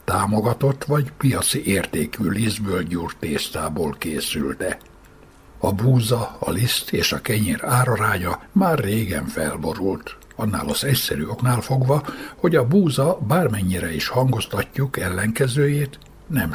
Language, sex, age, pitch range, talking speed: Hungarian, male, 60-79, 100-130 Hz, 110 wpm